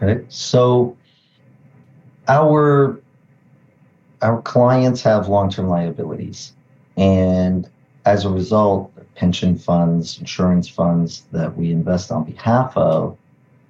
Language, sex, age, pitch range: English, male, 40-59, 95-135 Hz